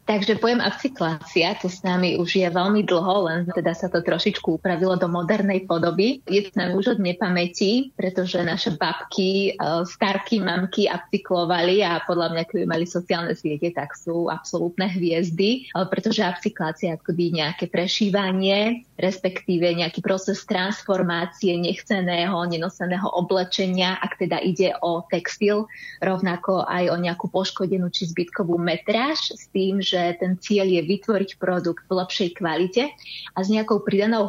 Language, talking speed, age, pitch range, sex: Slovak, 145 wpm, 20-39, 175-200 Hz, female